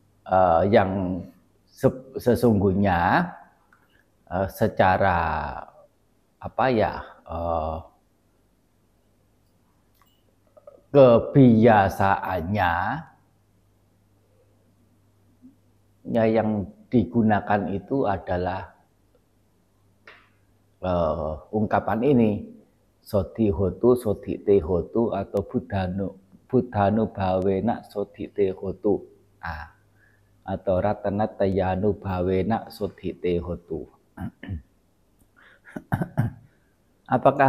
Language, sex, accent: Indonesian, male, native